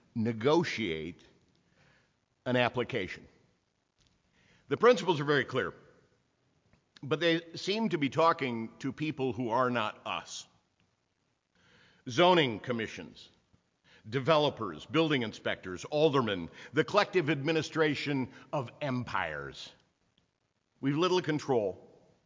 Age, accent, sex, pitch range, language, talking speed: 50-69, American, male, 120-160 Hz, English, 95 wpm